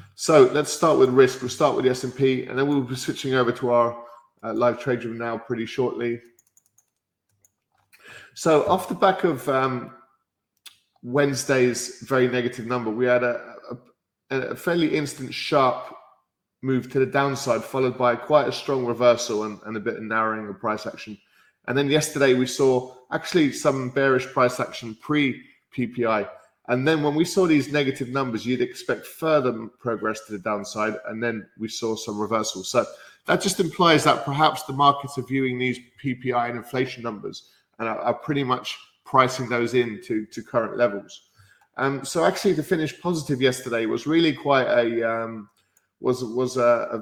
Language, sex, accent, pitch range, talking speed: English, male, British, 115-135 Hz, 175 wpm